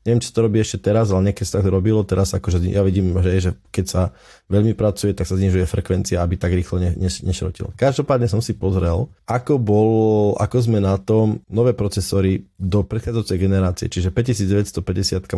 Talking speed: 190 wpm